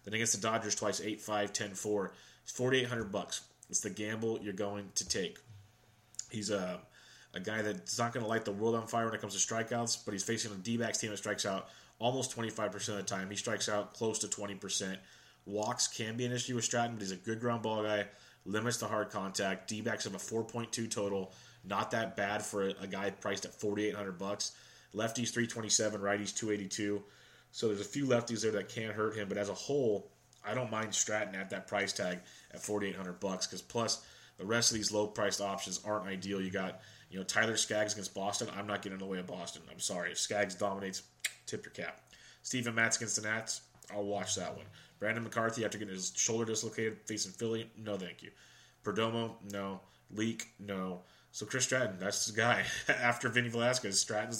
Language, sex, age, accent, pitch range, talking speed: English, male, 30-49, American, 100-115 Hz, 205 wpm